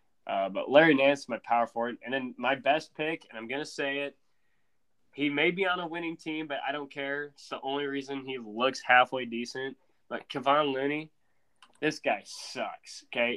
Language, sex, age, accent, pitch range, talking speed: English, male, 20-39, American, 115-150 Hz, 200 wpm